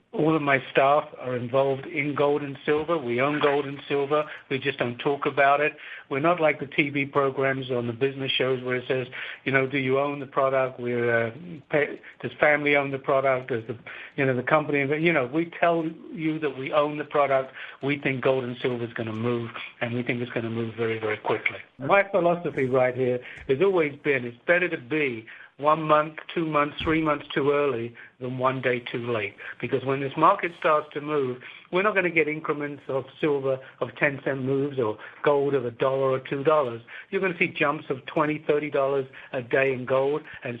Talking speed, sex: 220 wpm, male